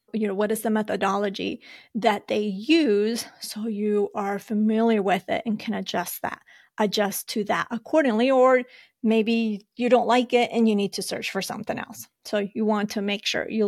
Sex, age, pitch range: female, 30-49, 200-230 Hz